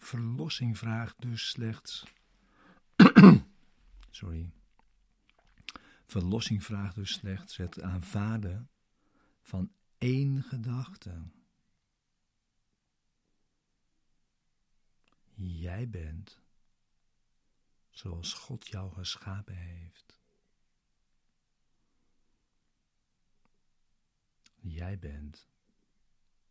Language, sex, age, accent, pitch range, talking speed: Dutch, male, 50-69, Dutch, 90-110 Hz, 50 wpm